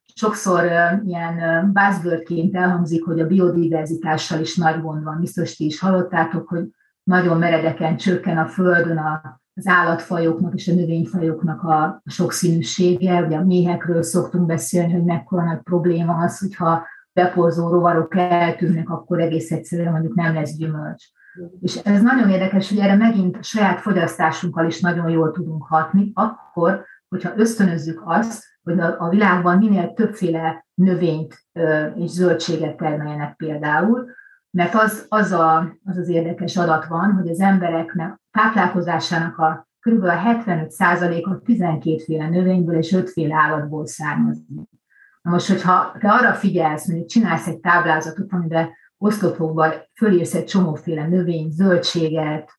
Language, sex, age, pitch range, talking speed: Hungarian, female, 30-49, 165-185 Hz, 135 wpm